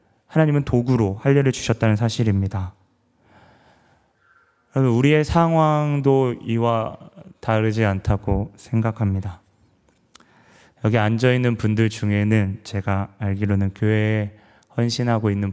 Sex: male